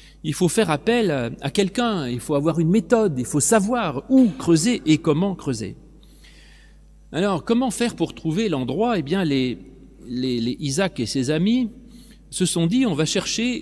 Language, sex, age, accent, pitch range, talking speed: French, male, 40-59, French, 145-210 Hz, 165 wpm